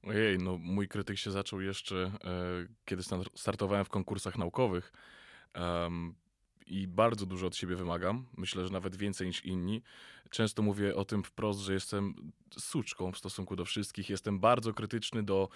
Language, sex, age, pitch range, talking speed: Polish, male, 20-39, 95-120 Hz, 155 wpm